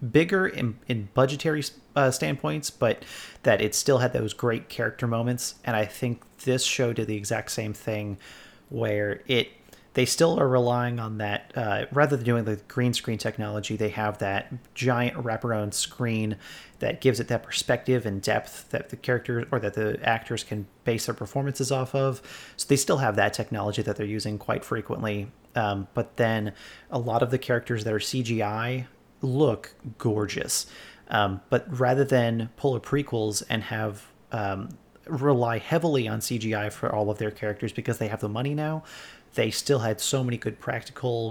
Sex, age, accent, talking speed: male, 30-49, American, 180 wpm